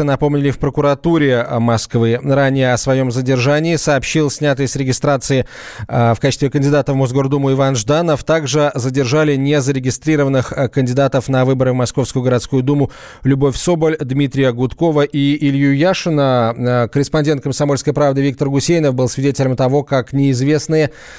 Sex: male